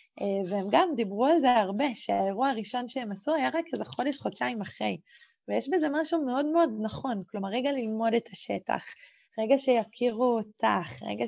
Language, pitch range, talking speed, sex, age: Hebrew, 195-255 Hz, 165 wpm, female, 20-39